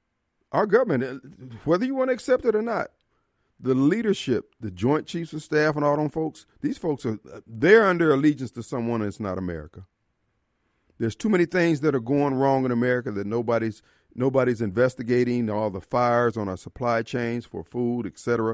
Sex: male